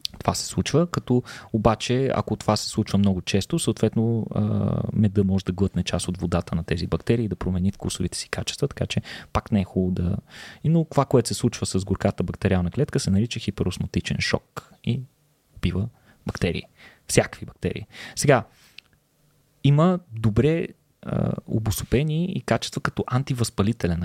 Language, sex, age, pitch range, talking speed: Bulgarian, male, 20-39, 95-115 Hz, 150 wpm